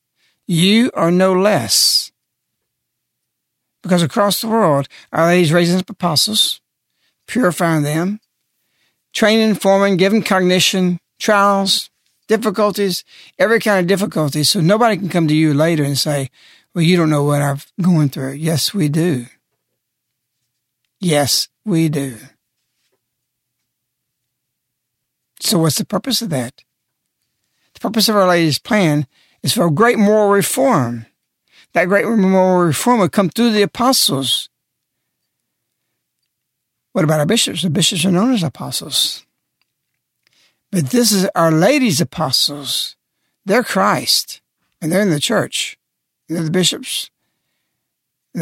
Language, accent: English, American